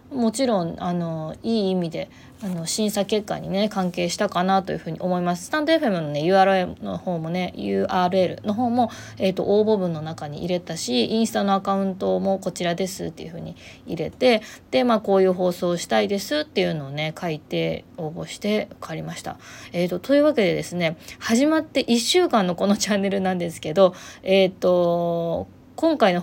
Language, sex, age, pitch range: Japanese, female, 20-39, 175-220 Hz